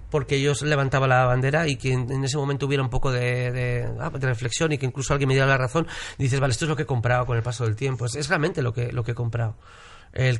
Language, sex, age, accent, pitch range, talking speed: Spanish, male, 40-59, Spanish, 125-160 Hz, 290 wpm